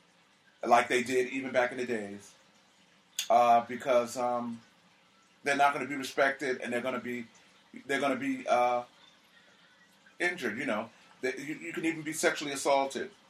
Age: 30-49